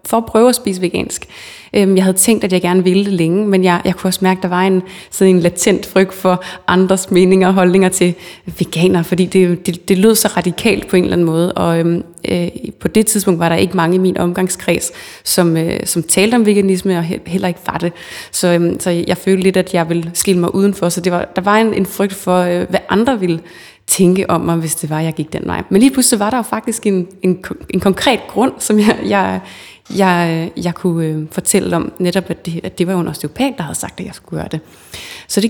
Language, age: Danish, 20-39